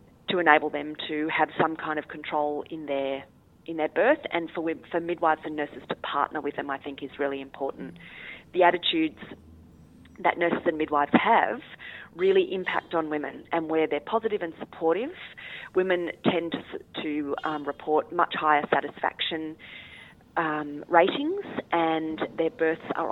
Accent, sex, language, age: Australian, female, English, 30-49